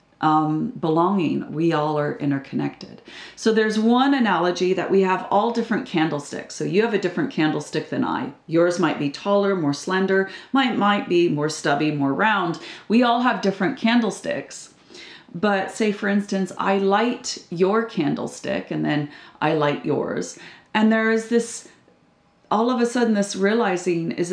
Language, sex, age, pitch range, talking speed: English, female, 40-59, 175-225 Hz, 165 wpm